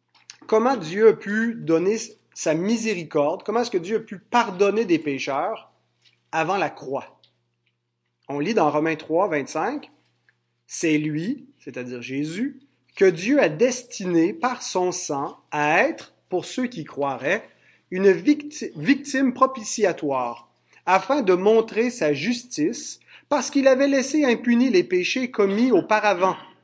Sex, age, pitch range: male, 30-49, 145-225 Hz